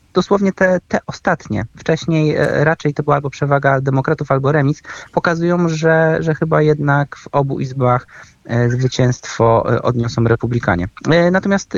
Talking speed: 125 wpm